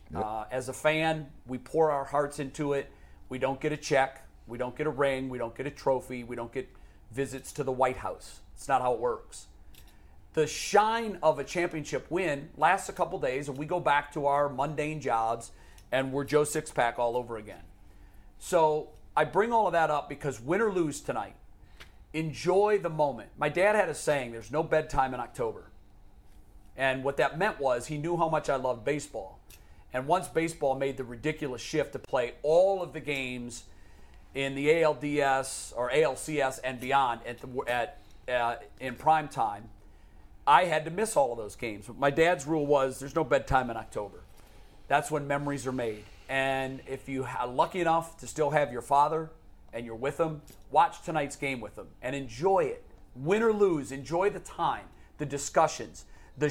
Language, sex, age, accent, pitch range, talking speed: English, male, 40-59, American, 125-155 Hz, 190 wpm